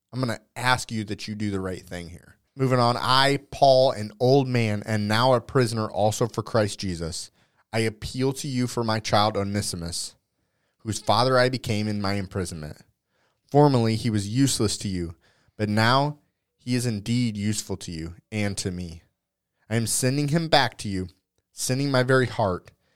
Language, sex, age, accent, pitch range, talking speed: English, male, 30-49, American, 100-125 Hz, 185 wpm